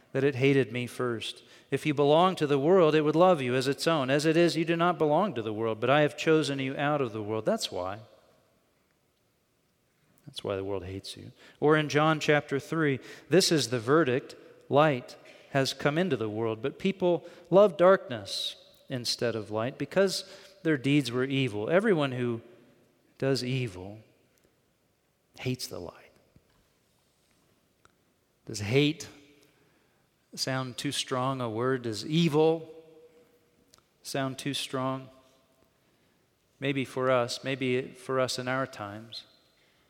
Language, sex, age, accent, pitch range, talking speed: English, male, 40-59, American, 120-150 Hz, 150 wpm